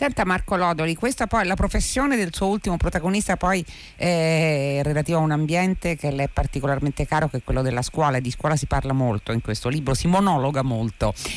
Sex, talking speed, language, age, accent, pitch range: female, 210 wpm, Italian, 40-59, native, 130-180 Hz